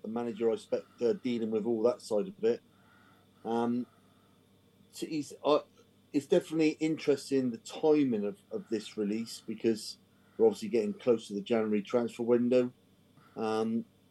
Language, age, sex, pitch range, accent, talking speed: English, 40-59, male, 110-140 Hz, British, 155 wpm